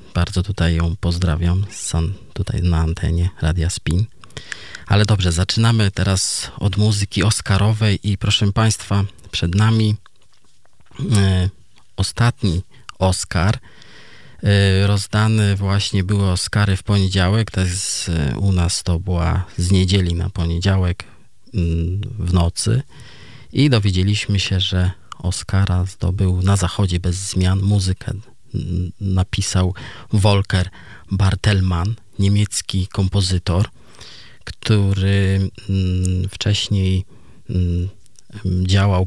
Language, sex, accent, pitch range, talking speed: Polish, male, native, 90-105 Hz, 100 wpm